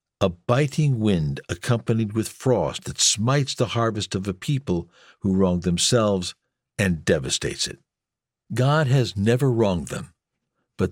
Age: 60-79